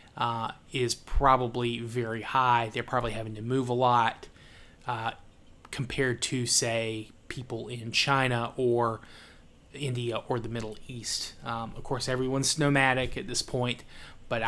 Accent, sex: American, male